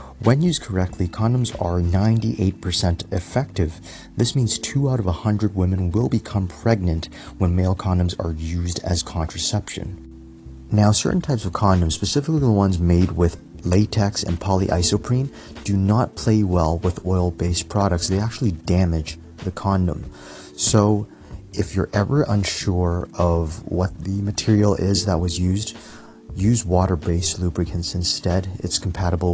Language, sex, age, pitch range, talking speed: English, male, 30-49, 85-105 Hz, 140 wpm